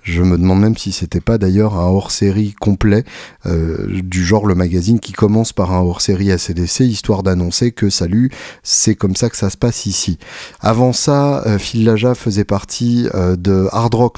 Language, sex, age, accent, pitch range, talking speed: French, male, 30-49, French, 95-115 Hz, 195 wpm